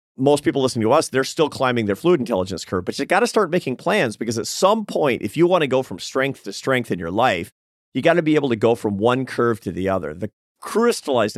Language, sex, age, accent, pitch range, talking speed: English, male, 40-59, American, 110-140 Hz, 265 wpm